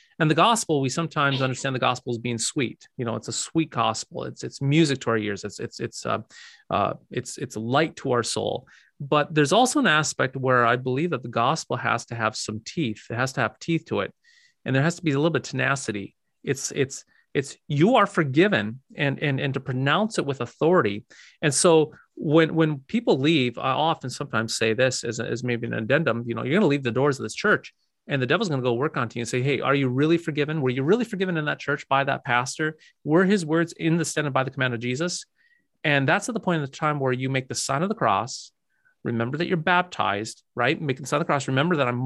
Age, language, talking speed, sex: 30-49, English, 250 wpm, male